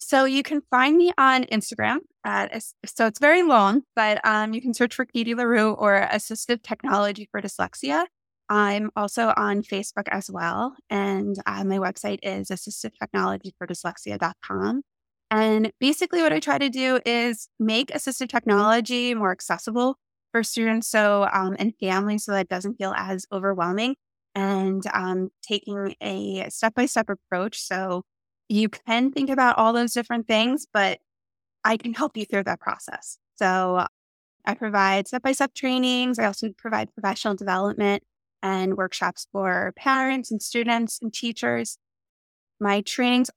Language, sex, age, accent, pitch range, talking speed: English, female, 20-39, American, 200-250 Hz, 145 wpm